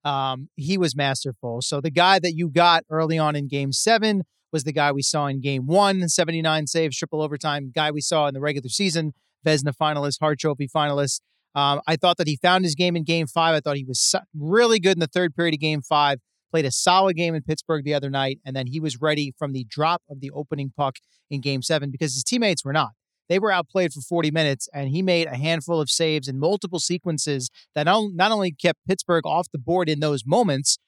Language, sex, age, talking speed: English, male, 30-49, 230 wpm